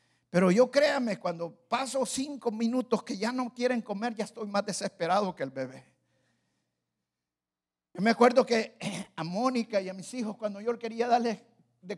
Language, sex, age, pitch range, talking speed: Spanish, male, 50-69, 190-260 Hz, 170 wpm